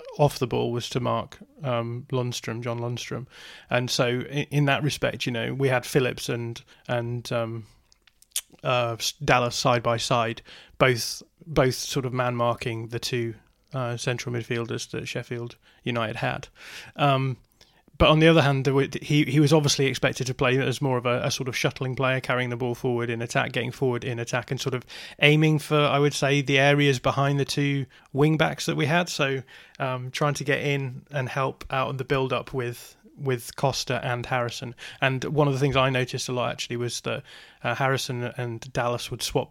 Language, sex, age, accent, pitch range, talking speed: English, male, 30-49, British, 120-140 Hz, 195 wpm